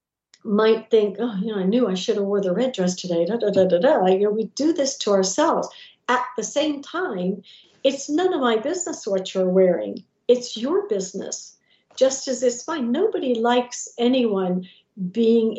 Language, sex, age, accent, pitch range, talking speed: English, female, 60-79, American, 205-265 Hz, 195 wpm